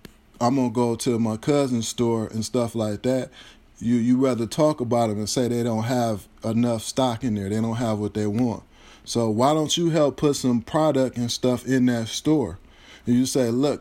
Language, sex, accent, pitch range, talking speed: English, male, American, 110-130 Hz, 215 wpm